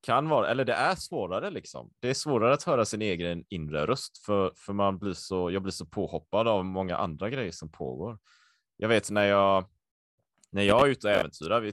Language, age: Swedish, 30-49